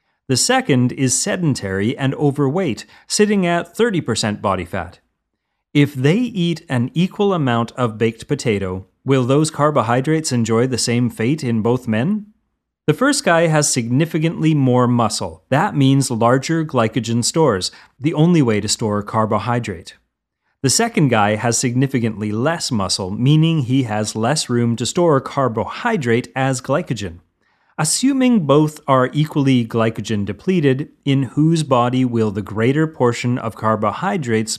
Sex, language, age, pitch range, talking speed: male, English, 30-49, 110-150 Hz, 140 wpm